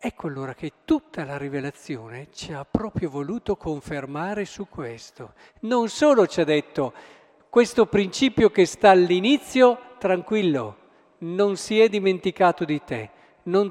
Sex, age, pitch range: male, 50-69, 155-210 Hz